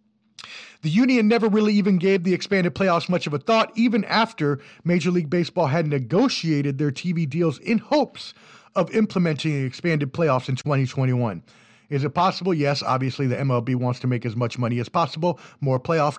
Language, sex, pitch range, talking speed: English, male, 130-185 Hz, 180 wpm